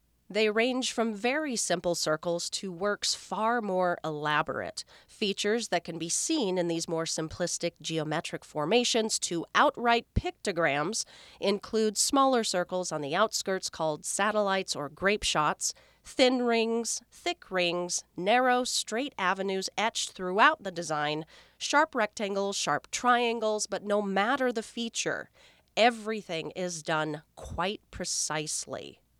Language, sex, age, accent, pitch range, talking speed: English, female, 30-49, American, 165-230 Hz, 125 wpm